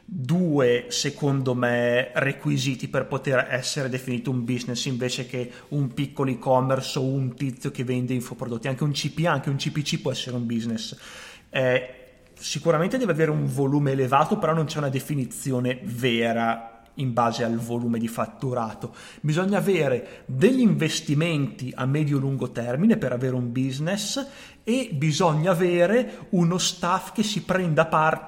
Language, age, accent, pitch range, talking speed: Italian, 30-49, native, 130-165 Hz, 150 wpm